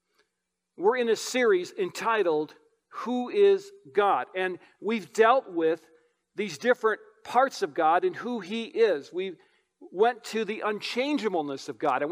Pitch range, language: 185-270 Hz, English